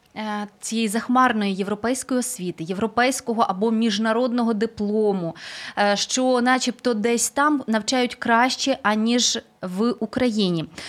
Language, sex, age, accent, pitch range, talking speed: Ukrainian, female, 20-39, native, 215-265 Hz, 95 wpm